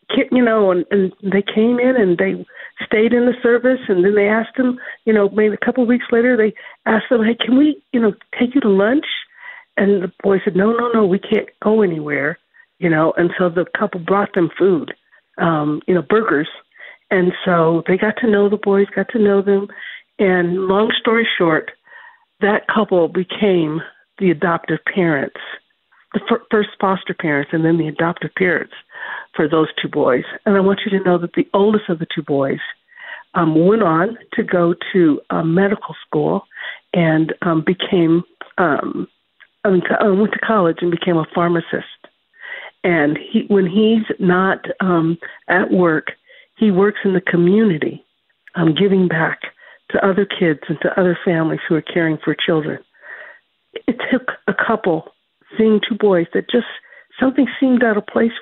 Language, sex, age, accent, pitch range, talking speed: English, female, 50-69, American, 175-225 Hz, 180 wpm